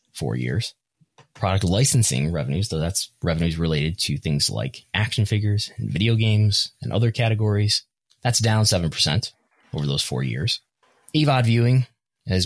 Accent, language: American, English